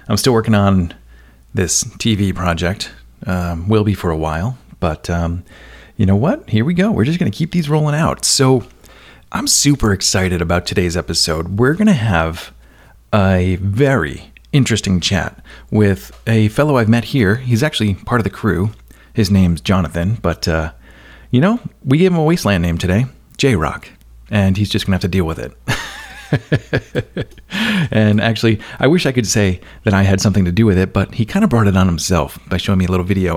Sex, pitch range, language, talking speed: male, 90-120 Hz, English, 200 wpm